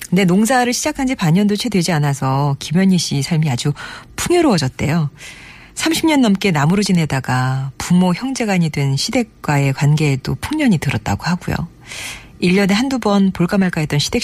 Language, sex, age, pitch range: Korean, female, 40-59, 145-200 Hz